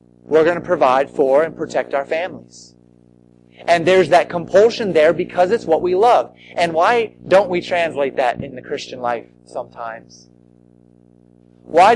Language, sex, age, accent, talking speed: English, male, 30-49, American, 155 wpm